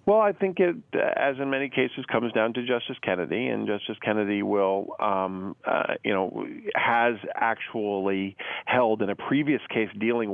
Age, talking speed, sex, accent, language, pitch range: 40-59, 170 wpm, male, American, English, 100-115 Hz